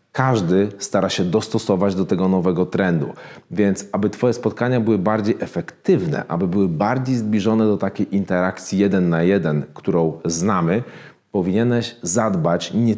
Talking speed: 140 wpm